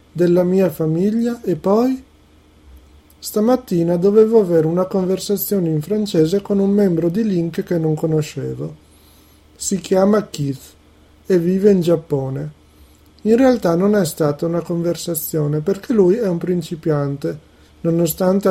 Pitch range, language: 145-195 Hz, Italian